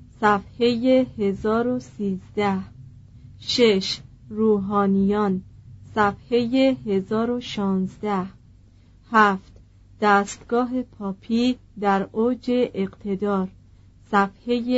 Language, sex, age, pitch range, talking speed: Persian, female, 40-59, 185-225 Hz, 55 wpm